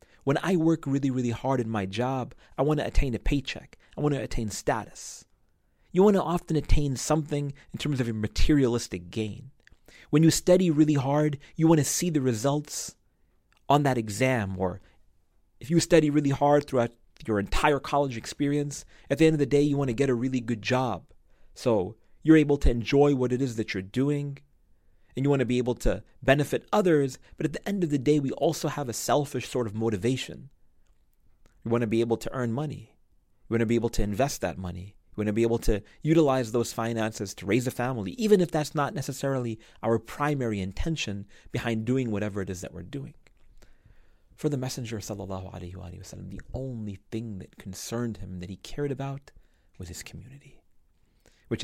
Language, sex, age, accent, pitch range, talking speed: English, male, 30-49, American, 100-145 Hz, 200 wpm